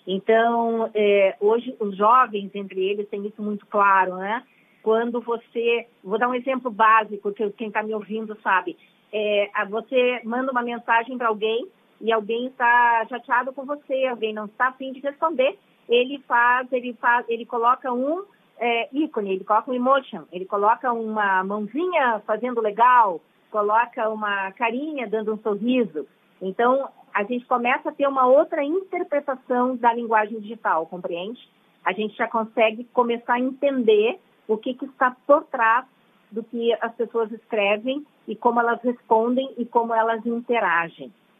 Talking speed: 150 wpm